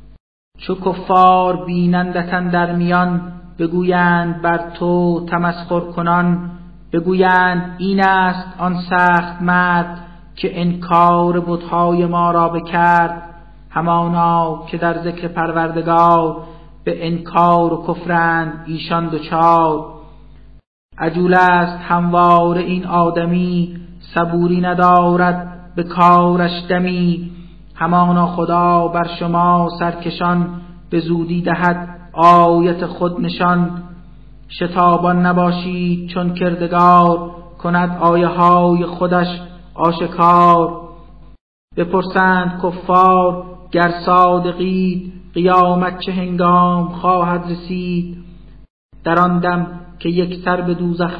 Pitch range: 170-180 Hz